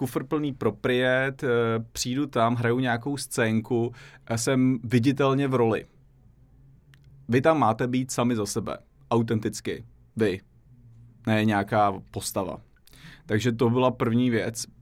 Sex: male